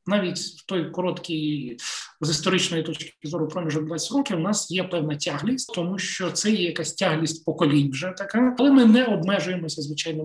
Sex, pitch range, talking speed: male, 160-205 Hz, 175 wpm